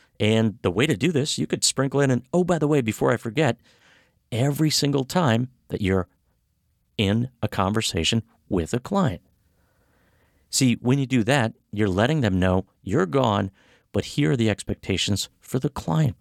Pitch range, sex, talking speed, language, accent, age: 95-135 Hz, male, 180 wpm, English, American, 50-69